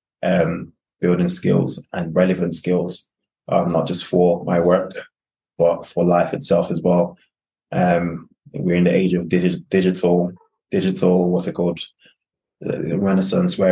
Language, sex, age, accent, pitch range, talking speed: English, male, 20-39, British, 85-90 Hz, 145 wpm